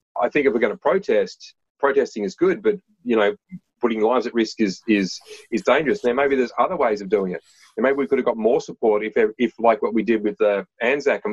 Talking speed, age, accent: 250 wpm, 30-49, Australian